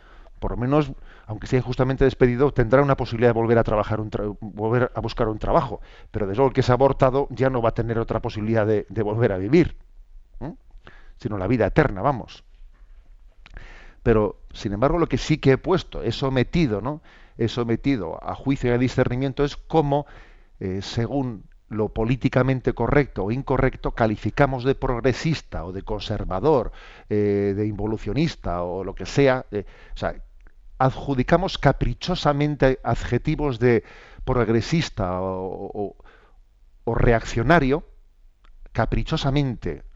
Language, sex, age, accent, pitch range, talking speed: Spanish, male, 40-59, Spanish, 105-135 Hz, 150 wpm